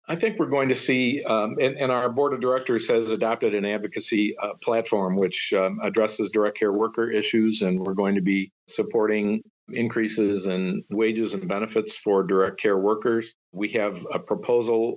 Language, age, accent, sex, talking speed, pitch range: English, 50-69, American, male, 180 wpm, 100-115 Hz